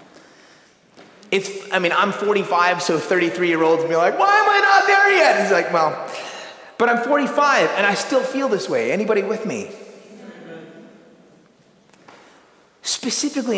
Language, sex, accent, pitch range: English, male, American, 170-255 Hz